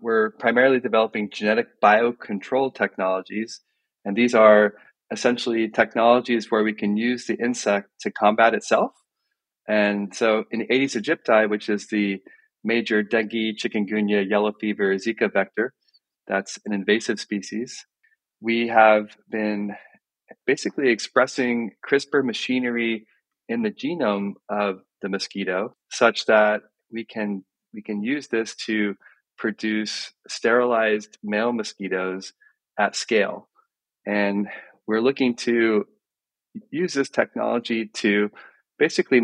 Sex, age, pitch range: male, 30-49, 105-120 Hz